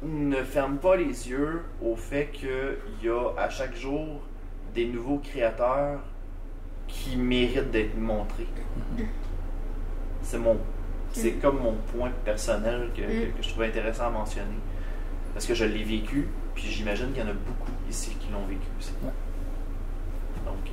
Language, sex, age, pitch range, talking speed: English, male, 30-49, 95-135 Hz, 150 wpm